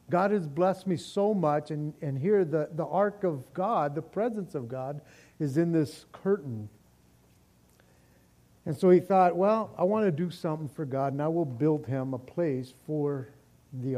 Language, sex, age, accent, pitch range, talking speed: English, male, 50-69, American, 125-175 Hz, 185 wpm